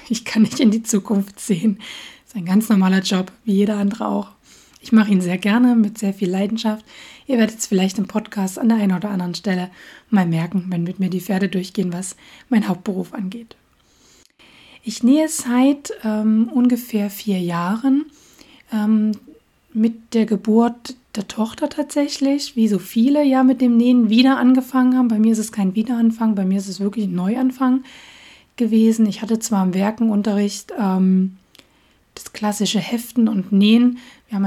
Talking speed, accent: 175 wpm, German